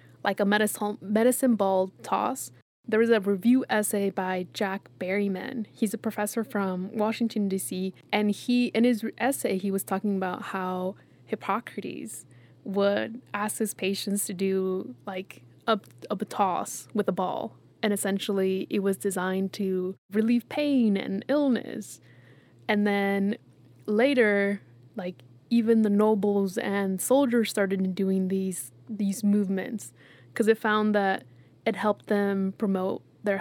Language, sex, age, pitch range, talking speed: English, female, 20-39, 190-225 Hz, 140 wpm